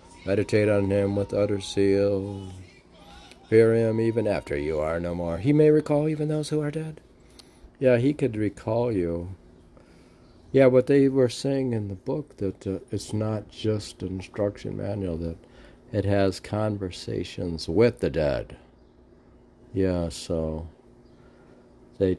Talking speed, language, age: 145 wpm, English, 50-69